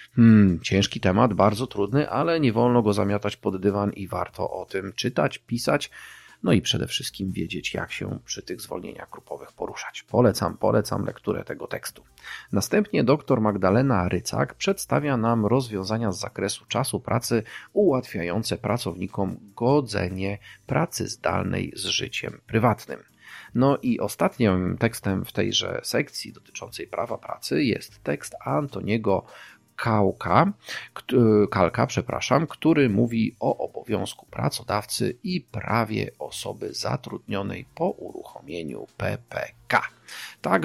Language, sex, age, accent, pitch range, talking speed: Polish, male, 40-59, native, 100-120 Hz, 125 wpm